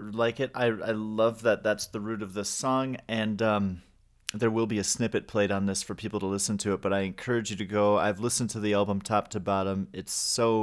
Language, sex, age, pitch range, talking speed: English, male, 30-49, 100-115 Hz, 250 wpm